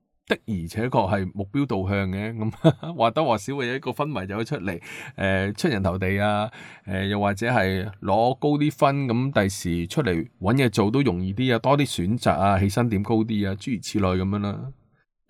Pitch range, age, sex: 100-125 Hz, 20-39, male